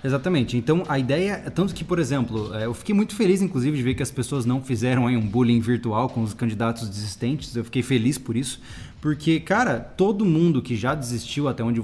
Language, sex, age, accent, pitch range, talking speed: Portuguese, male, 20-39, Brazilian, 125-190 Hz, 220 wpm